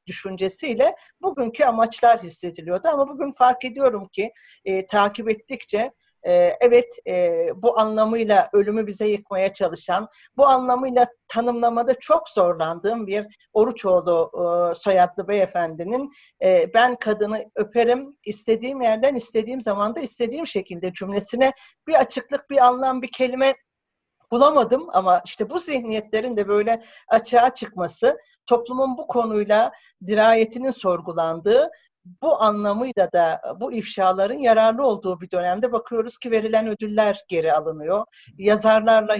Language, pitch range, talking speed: Turkish, 195-255 Hz, 120 wpm